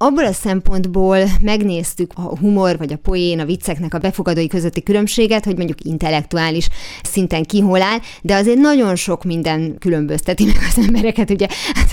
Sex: female